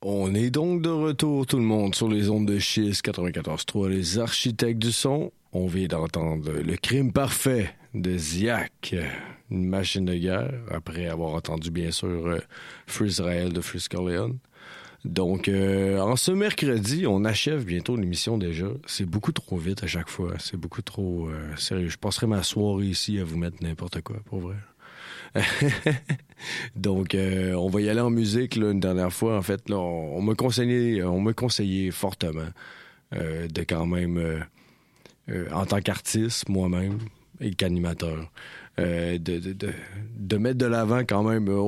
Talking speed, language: 165 wpm, French